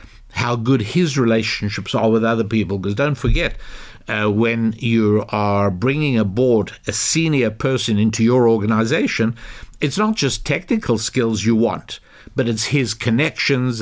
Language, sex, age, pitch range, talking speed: English, male, 60-79, 110-135 Hz, 150 wpm